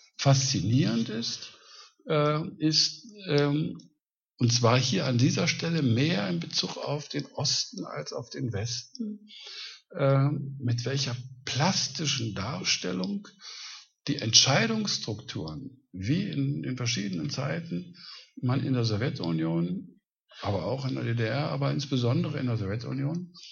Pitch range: 120-155 Hz